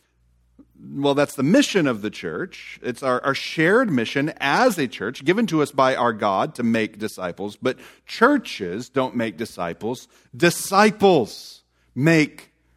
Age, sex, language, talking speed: 40-59, male, English, 145 wpm